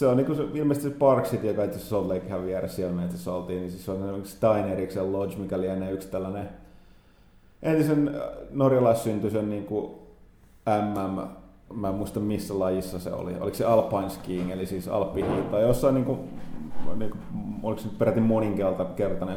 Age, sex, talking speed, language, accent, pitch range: 30-49, male, 170 wpm, Finnish, native, 95-115 Hz